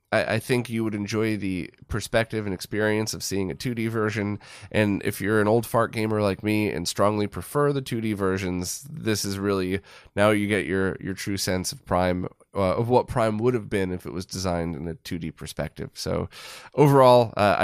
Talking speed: 200 wpm